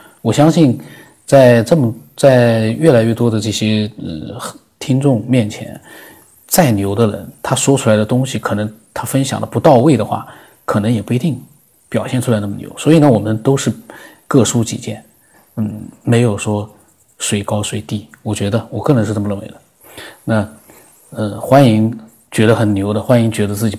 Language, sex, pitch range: Chinese, male, 105-125 Hz